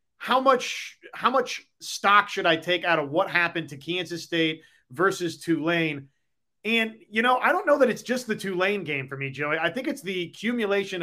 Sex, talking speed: male, 200 wpm